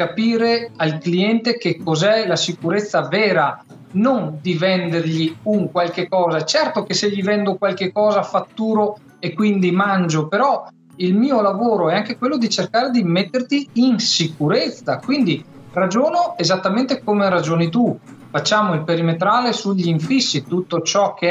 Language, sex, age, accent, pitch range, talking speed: Italian, male, 40-59, native, 165-230 Hz, 145 wpm